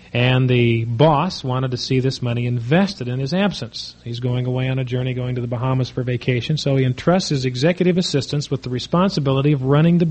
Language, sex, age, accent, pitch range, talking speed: English, male, 40-59, American, 120-145 Hz, 215 wpm